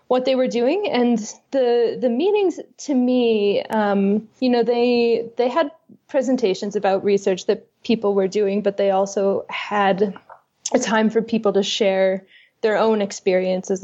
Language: English